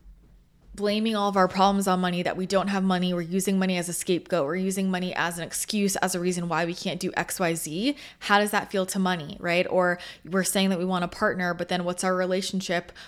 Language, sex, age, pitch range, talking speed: English, female, 20-39, 175-205 Hz, 240 wpm